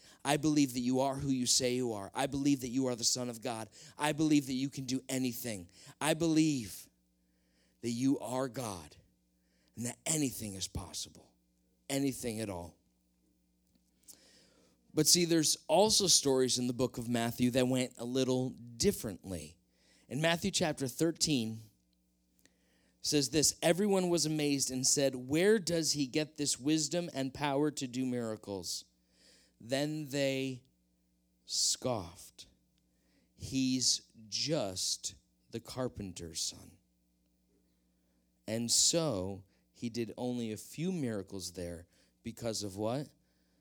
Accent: American